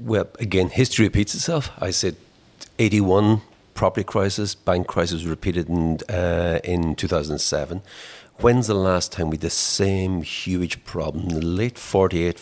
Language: English